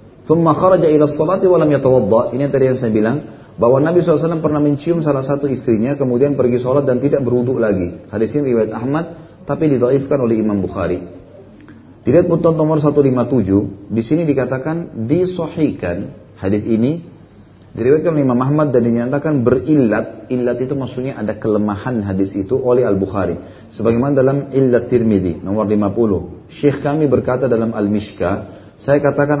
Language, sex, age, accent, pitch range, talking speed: Indonesian, male, 30-49, native, 105-140 Hz, 140 wpm